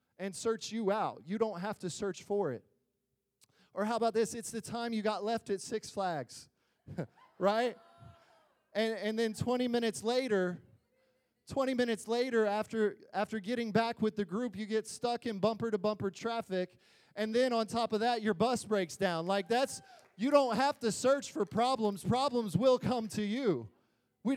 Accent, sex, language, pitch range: American, male, English, 155-230 Hz